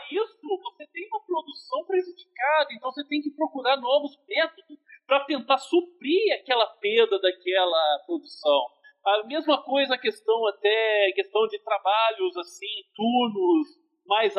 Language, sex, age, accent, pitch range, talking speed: Portuguese, male, 40-59, Brazilian, 225-350 Hz, 130 wpm